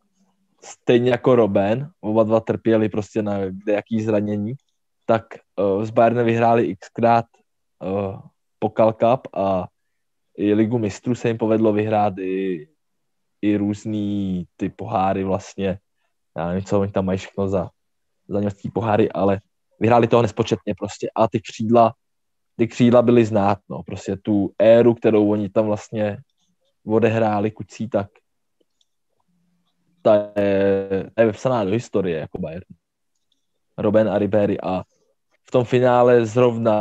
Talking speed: 130 wpm